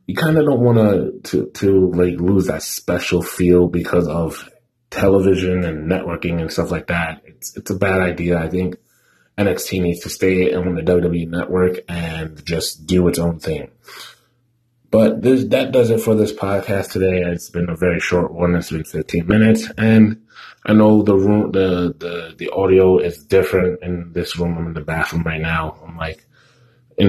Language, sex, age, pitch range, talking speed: English, male, 20-39, 85-110 Hz, 185 wpm